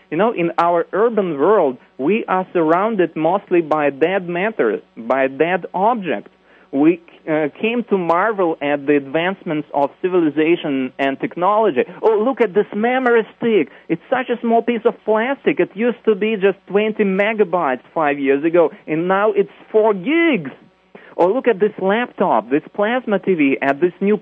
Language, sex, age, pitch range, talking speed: English, male, 30-49, 170-230 Hz, 165 wpm